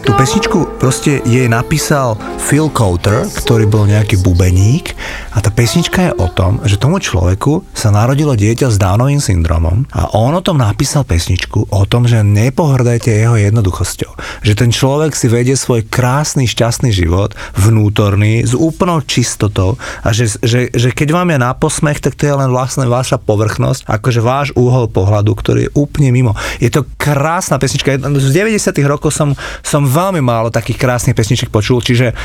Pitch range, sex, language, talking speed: 105-135 Hz, male, Slovak, 165 wpm